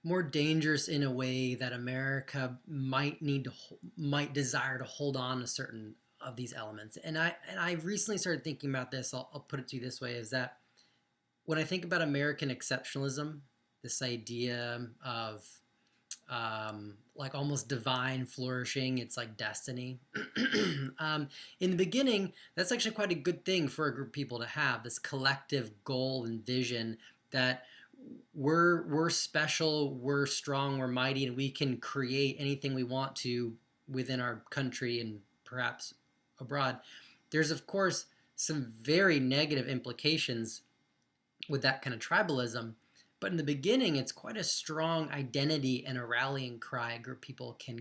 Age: 20-39